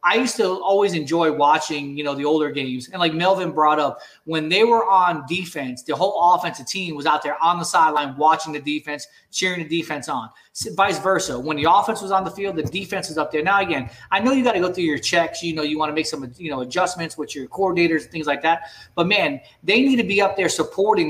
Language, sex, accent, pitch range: English, male, American, 155-195 Hz